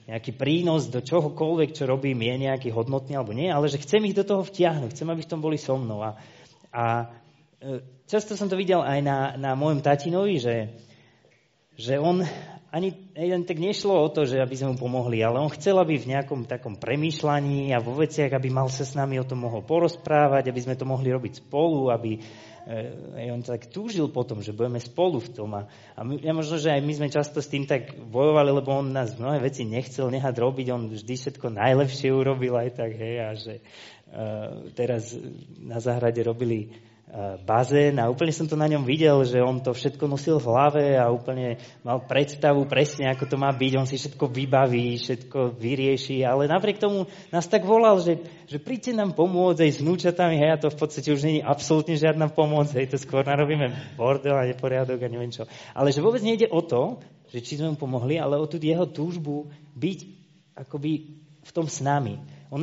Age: 20-39